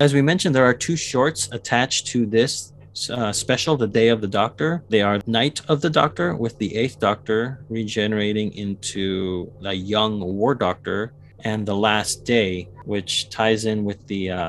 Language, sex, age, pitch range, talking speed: English, male, 30-49, 95-115 Hz, 180 wpm